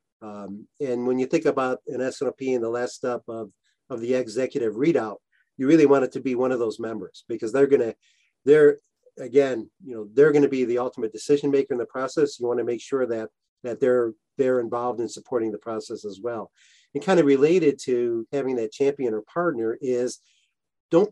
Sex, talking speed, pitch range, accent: male, 210 wpm, 125-160 Hz, American